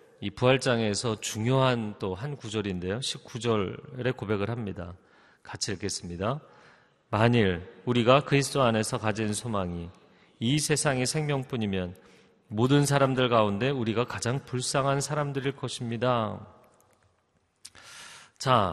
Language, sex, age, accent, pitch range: Korean, male, 40-59, native, 115-155 Hz